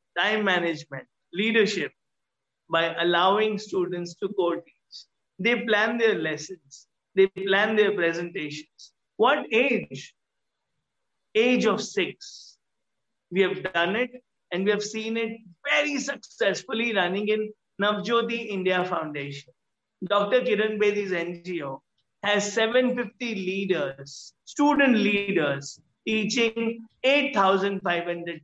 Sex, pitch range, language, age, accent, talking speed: male, 170-215 Hz, English, 50-69, Indian, 105 wpm